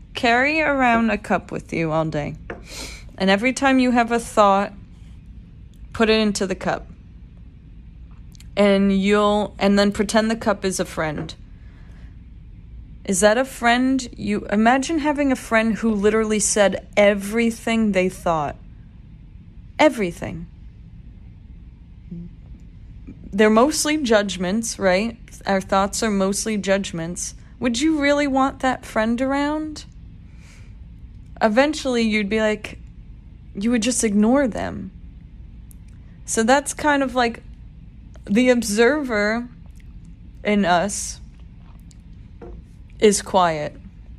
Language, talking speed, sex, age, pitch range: English, 110 wpm, female, 30-49, 175-230 Hz